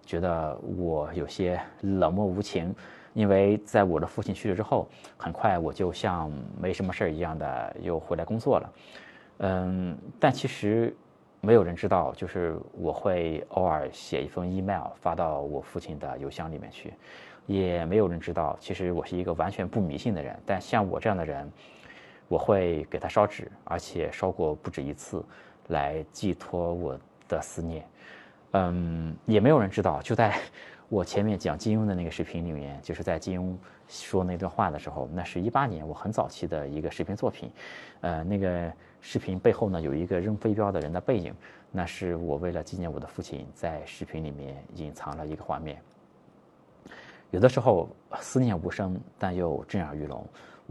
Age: 20-39